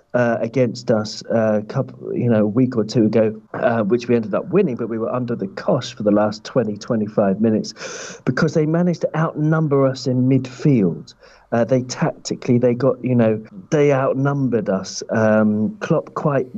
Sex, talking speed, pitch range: male, 190 wpm, 110-130 Hz